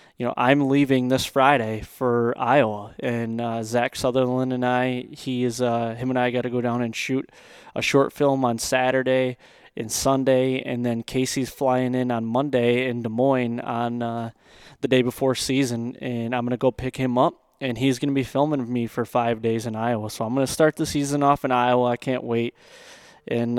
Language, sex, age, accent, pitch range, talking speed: English, male, 20-39, American, 120-135 Hz, 210 wpm